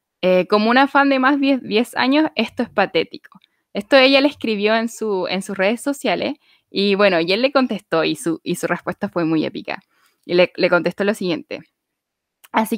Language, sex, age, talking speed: Spanish, female, 10-29, 200 wpm